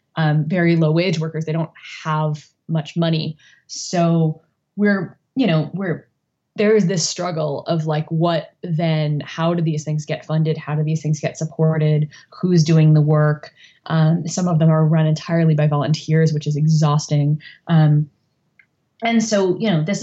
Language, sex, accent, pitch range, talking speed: English, female, American, 150-175 Hz, 170 wpm